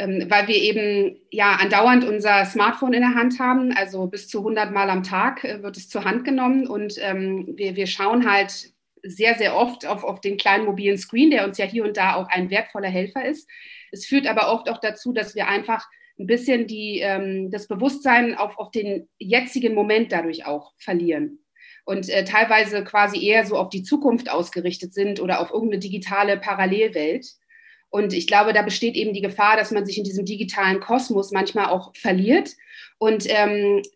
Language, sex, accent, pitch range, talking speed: German, female, German, 190-225 Hz, 190 wpm